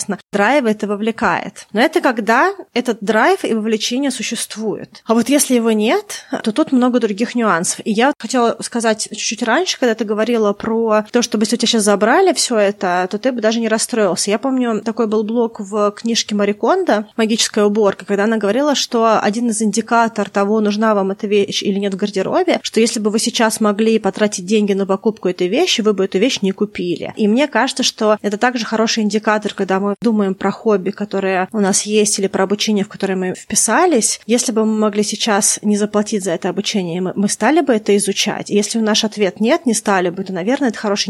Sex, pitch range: female, 200-230 Hz